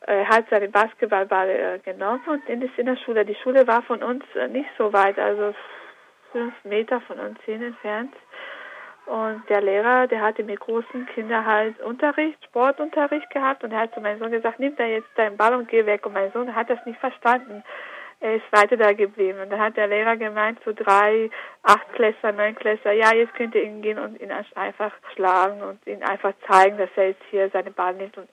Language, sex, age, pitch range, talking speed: German, female, 60-79, 205-245 Hz, 210 wpm